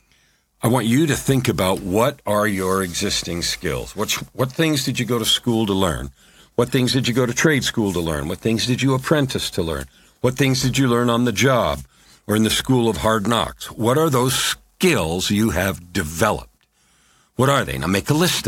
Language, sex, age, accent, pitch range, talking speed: English, male, 50-69, American, 95-130 Hz, 220 wpm